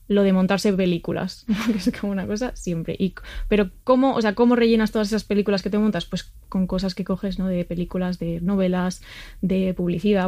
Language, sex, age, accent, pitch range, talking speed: Spanish, female, 20-39, Spanish, 185-220 Hz, 205 wpm